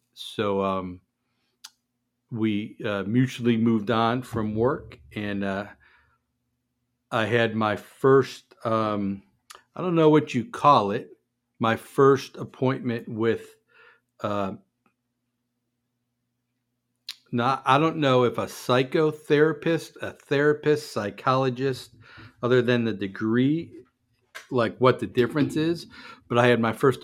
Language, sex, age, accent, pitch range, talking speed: English, male, 50-69, American, 110-125 Hz, 115 wpm